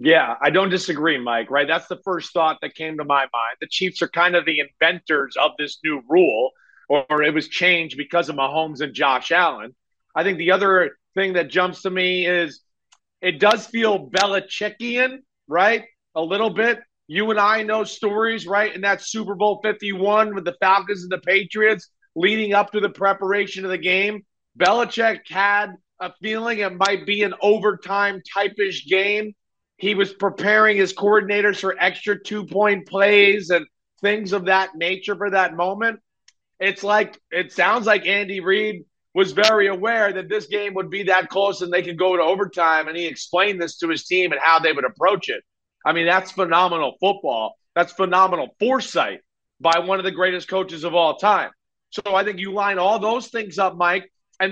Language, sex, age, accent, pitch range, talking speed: English, male, 40-59, American, 175-205 Hz, 190 wpm